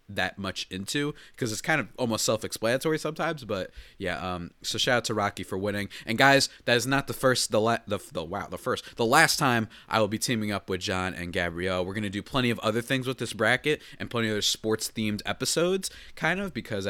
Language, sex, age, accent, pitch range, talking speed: English, male, 30-49, American, 100-150 Hz, 235 wpm